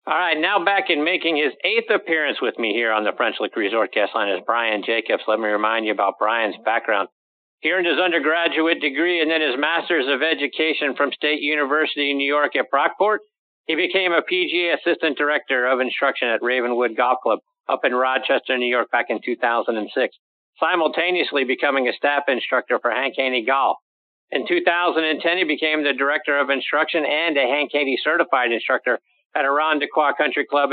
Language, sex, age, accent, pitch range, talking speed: English, male, 50-69, American, 130-165 Hz, 185 wpm